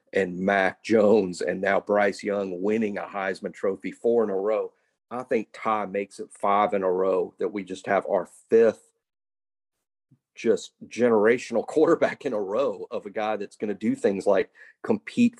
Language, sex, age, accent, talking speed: English, male, 40-59, American, 180 wpm